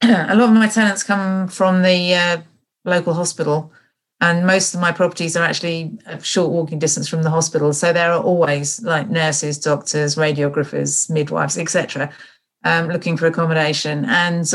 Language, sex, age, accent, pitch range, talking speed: English, female, 40-59, British, 150-175 Hz, 170 wpm